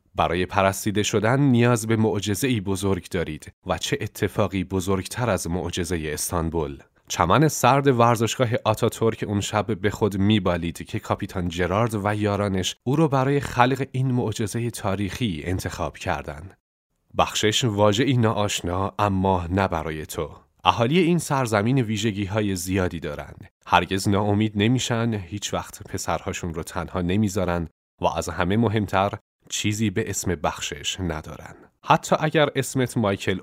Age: 30-49